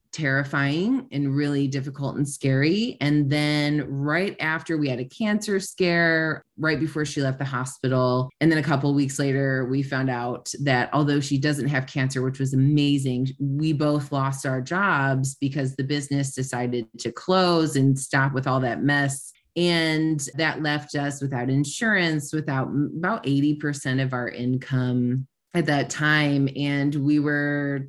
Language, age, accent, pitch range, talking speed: English, 20-39, American, 135-160 Hz, 160 wpm